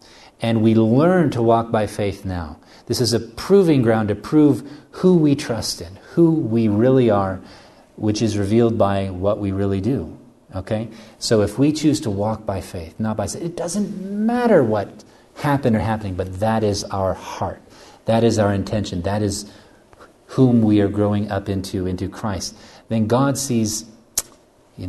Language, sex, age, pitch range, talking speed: English, male, 40-59, 95-120 Hz, 175 wpm